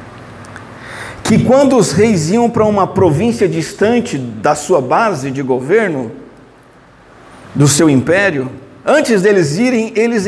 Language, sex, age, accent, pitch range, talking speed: Portuguese, male, 50-69, Brazilian, 195-265 Hz, 125 wpm